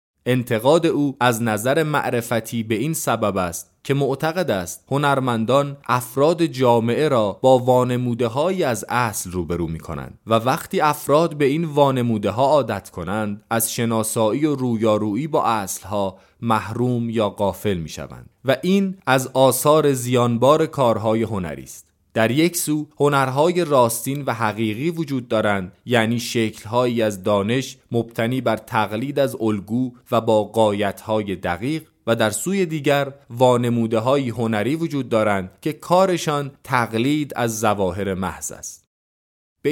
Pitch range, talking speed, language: 105-145 Hz, 135 wpm, Persian